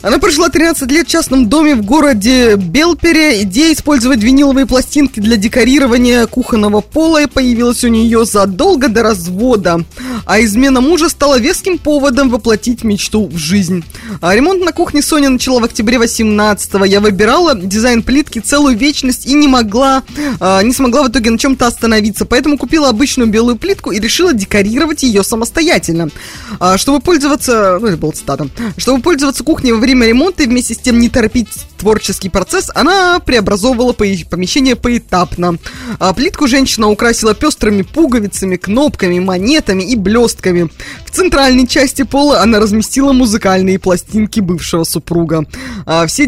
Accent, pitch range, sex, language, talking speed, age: native, 190-275 Hz, female, Russian, 150 wpm, 20-39